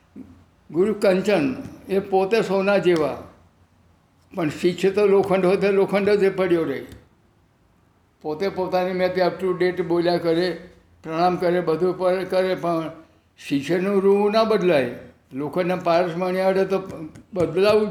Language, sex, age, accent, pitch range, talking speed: Gujarati, male, 60-79, native, 160-195 Hz, 125 wpm